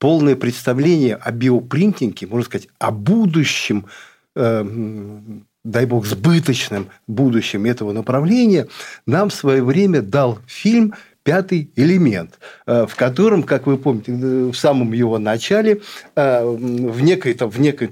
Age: 50-69